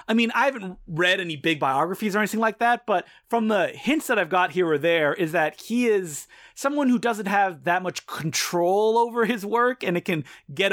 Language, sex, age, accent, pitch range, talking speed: English, male, 30-49, American, 165-225 Hz, 225 wpm